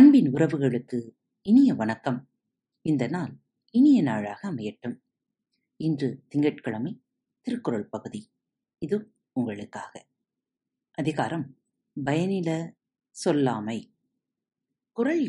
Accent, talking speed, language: native, 65 wpm, Tamil